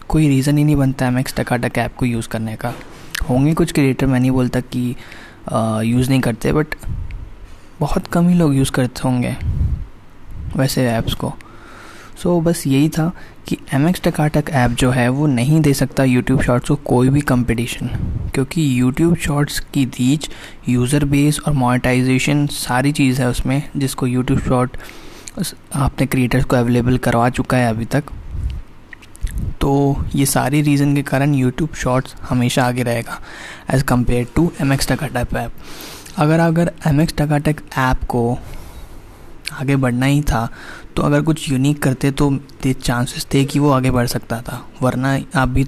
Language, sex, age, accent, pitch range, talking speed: Hindi, male, 20-39, native, 125-145 Hz, 165 wpm